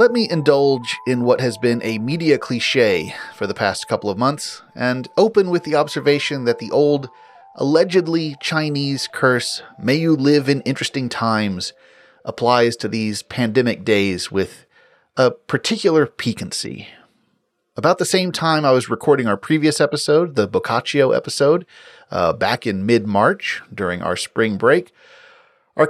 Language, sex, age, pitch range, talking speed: English, male, 30-49, 115-170 Hz, 150 wpm